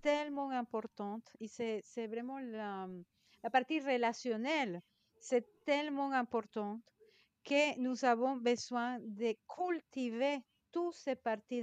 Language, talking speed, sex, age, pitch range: French, 115 wpm, female, 50-69, 215-265 Hz